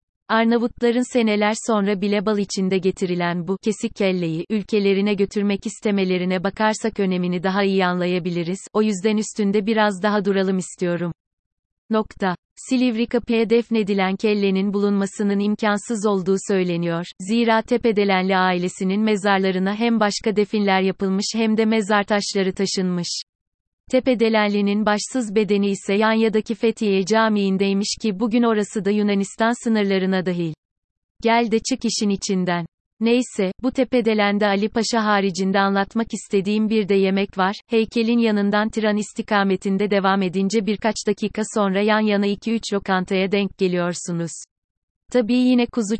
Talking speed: 130 wpm